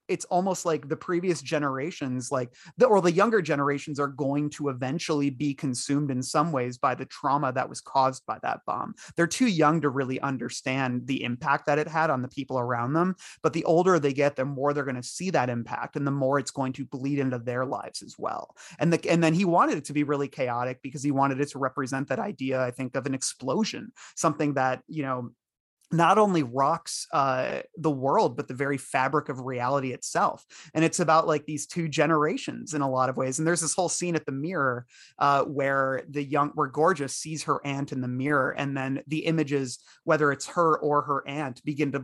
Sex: male